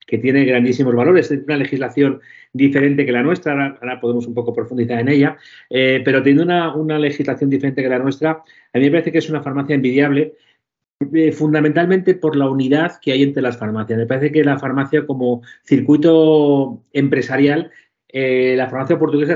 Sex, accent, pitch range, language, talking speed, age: male, Spanish, 130-150 Hz, Spanish, 185 wpm, 30-49